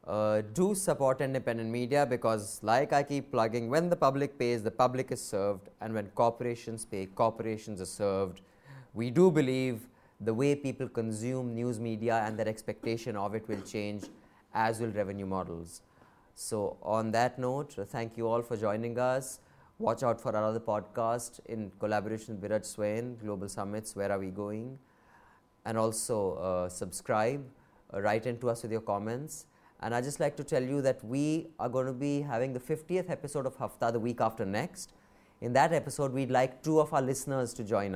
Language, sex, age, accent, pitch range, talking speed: English, male, 30-49, Indian, 105-130 Hz, 185 wpm